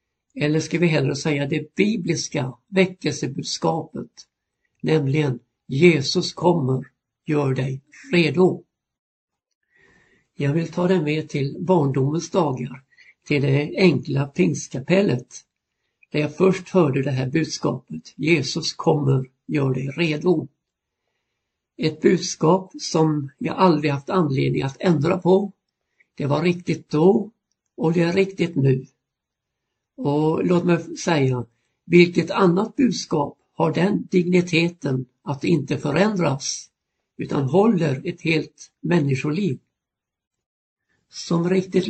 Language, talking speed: Swedish, 110 wpm